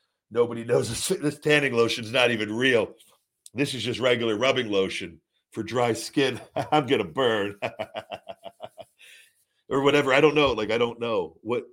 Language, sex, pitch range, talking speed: English, male, 100-125 Hz, 170 wpm